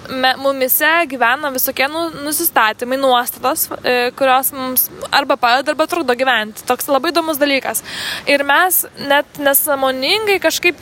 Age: 20-39